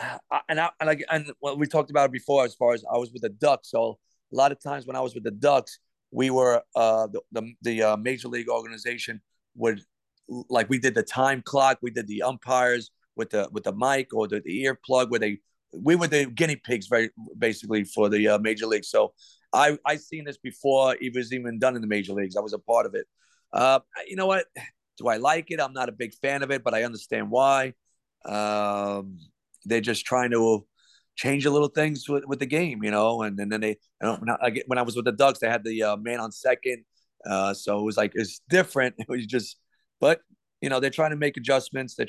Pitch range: 110-135 Hz